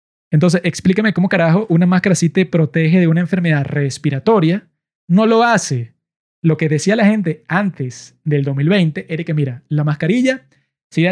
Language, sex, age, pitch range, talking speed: Spanish, male, 20-39, 155-200 Hz, 160 wpm